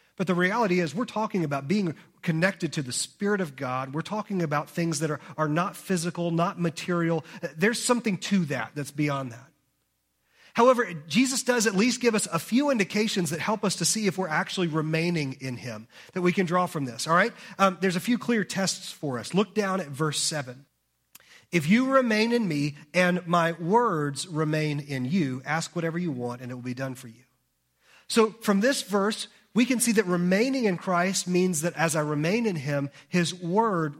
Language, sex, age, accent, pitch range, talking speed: English, male, 30-49, American, 145-195 Hz, 205 wpm